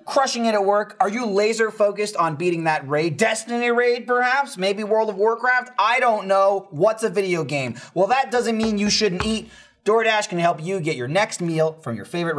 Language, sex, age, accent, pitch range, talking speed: English, male, 30-49, American, 160-235 Hz, 215 wpm